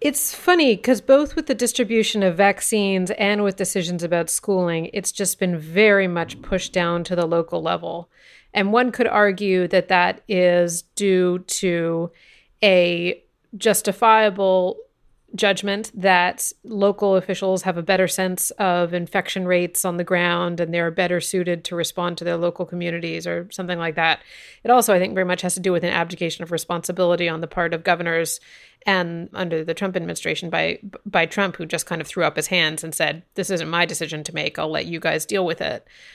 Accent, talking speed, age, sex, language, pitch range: American, 190 wpm, 30-49, female, English, 175-205 Hz